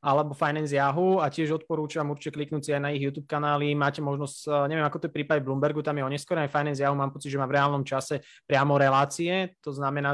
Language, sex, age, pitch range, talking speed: Slovak, male, 20-39, 140-160 Hz, 220 wpm